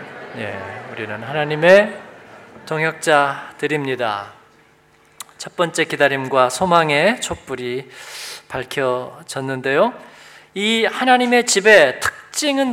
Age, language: 40-59, Korean